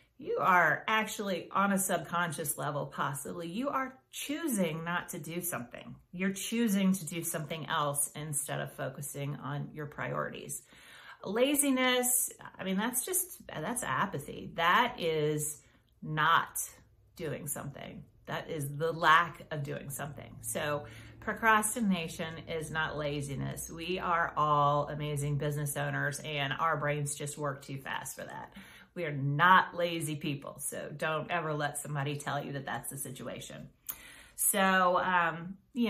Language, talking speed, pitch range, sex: English, 140 wpm, 150-190 Hz, female